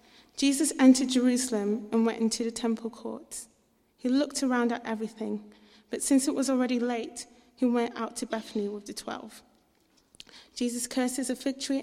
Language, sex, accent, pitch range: English, female, British, 215-250 Hz